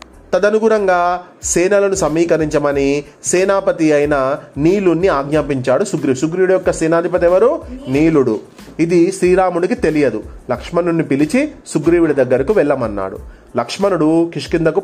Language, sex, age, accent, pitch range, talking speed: Telugu, male, 30-49, native, 150-180 Hz, 85 wpm